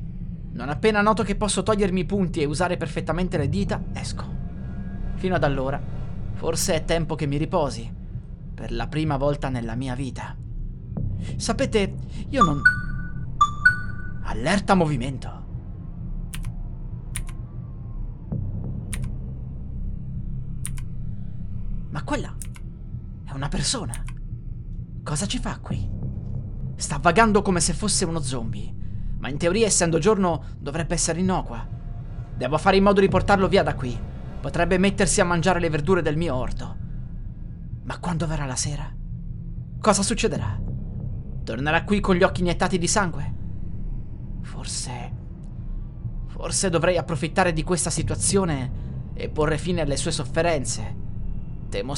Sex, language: male, Italian